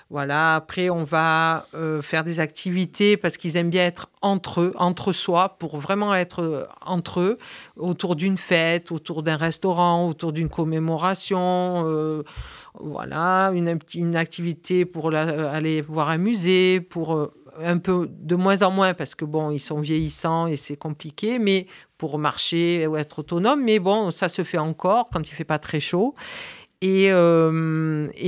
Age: 50-69